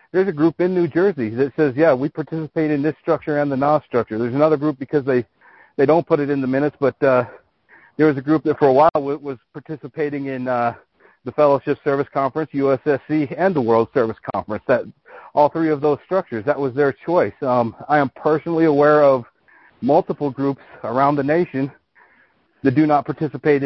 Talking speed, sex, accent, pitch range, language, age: 200 wpm, male, American, 130-150 Hz, English, 40-59